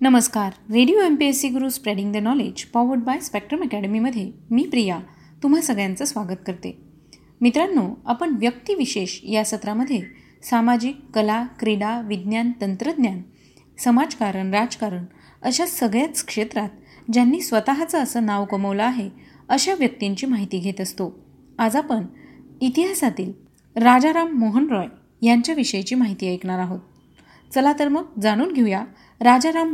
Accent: native